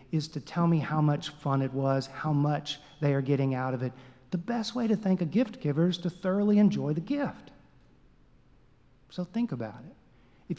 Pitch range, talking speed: 135-175 Hz, 205 wpm